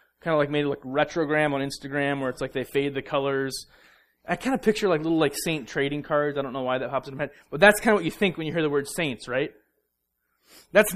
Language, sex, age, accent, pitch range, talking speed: English, male, 30-49, American, 135-205 Hz, 270 wpm